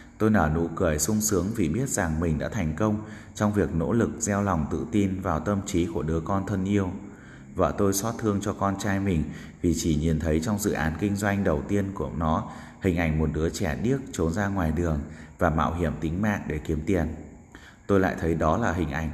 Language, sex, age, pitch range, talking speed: Vietnamese, male, 20-39, 80-100 Hz, 235 wpm